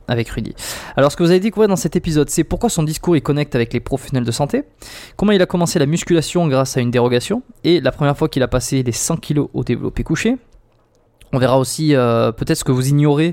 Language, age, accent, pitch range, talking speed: French, 20-39, French, 125-160 Hz, 245 wpm